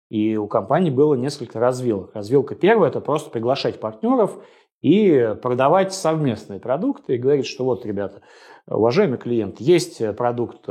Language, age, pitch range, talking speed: Russian, 30-49, 110-150 Hz, 140 wpm